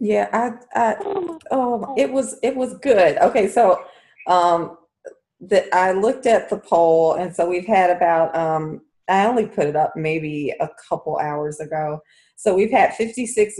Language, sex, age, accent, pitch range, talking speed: English, female, 30-49, American, 160-200 Hz, 170 wpm